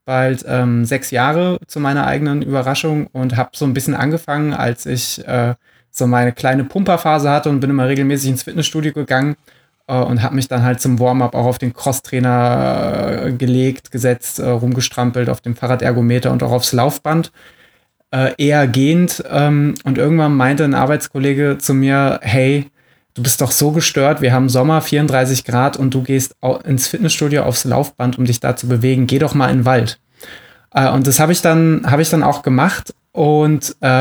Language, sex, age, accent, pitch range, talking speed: German, male, 20-39, German, 125-150 Hz, 180 wpm